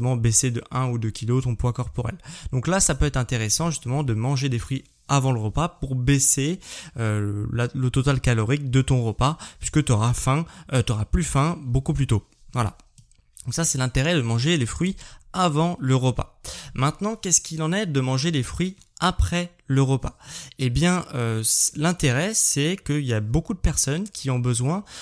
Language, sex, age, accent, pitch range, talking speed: French, male, 20-39, French, 120-155 Hz, 205 wpm